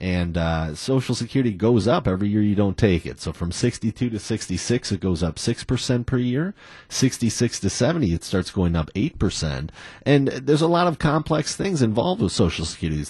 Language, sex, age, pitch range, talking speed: English, male, 30-49, 85-115 Hz, 190 wpm